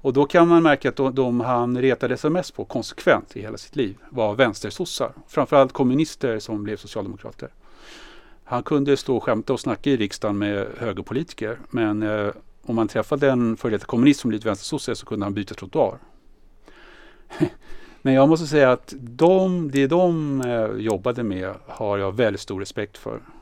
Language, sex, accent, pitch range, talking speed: English, male, Norwegian, 100-125 Hz, 165 wpm